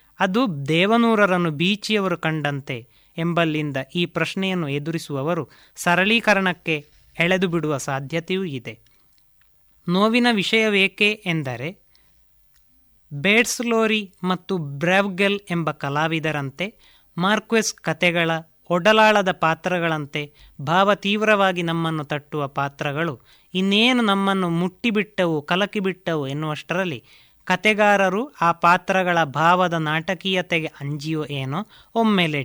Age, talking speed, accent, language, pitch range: 20-39, 80 wpm, native, Kannada, 155-195 Hz